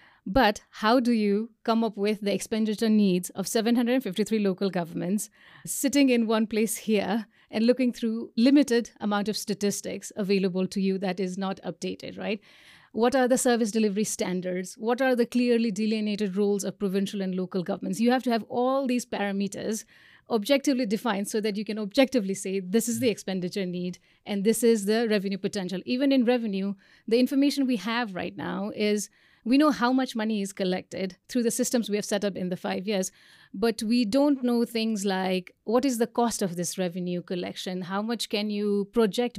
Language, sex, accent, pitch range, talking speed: English, female, Indian, 195-235 Hz, 190 wpm